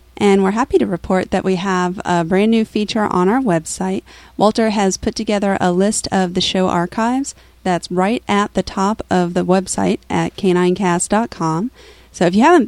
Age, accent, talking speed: 30-49, American, 185 wpm